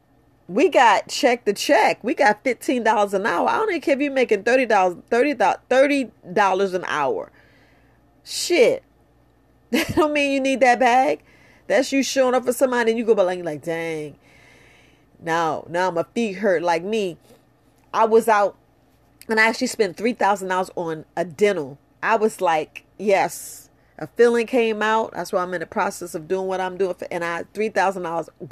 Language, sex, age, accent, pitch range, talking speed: English, female, 40-59, American, 170-235 Hz, 175 wpm